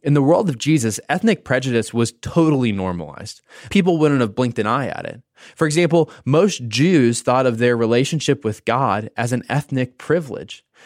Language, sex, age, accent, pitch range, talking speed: English, male, 20-39, American, 120-165 Hz, 175 wpm